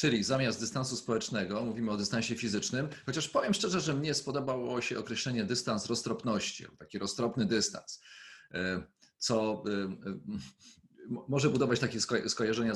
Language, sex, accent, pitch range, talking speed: Polish, male, native, 100-130 Hz, 120 wpm